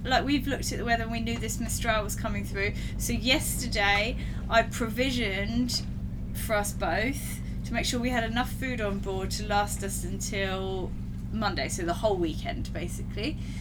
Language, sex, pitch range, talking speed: English, female, 100-120 Hz, 175 wpm